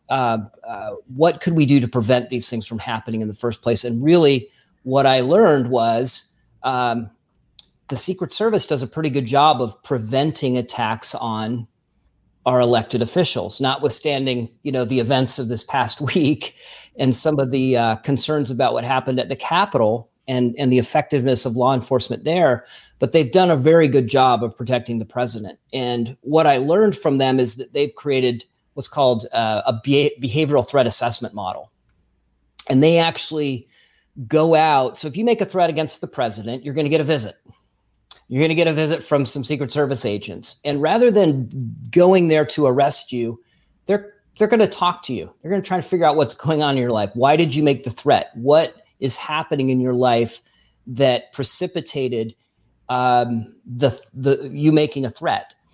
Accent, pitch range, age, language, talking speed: American, 120-155 Hz, 40-59, English, 185 wpm